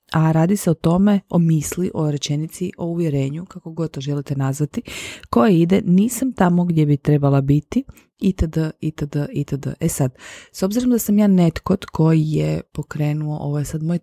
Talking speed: 180 wpm